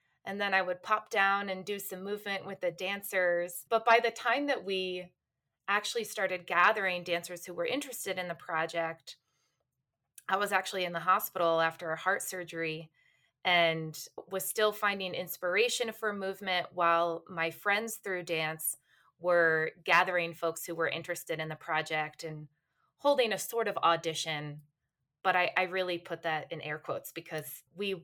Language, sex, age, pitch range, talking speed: English, female, 20-39, 165-195 Hz, 165 wpm